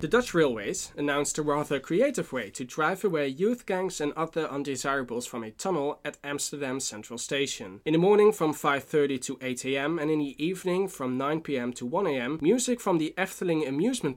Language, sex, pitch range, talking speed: English, male, 130-170 Hz, 180 wpm